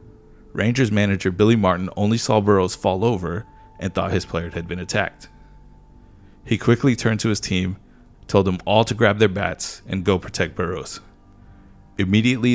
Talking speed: 165 wpm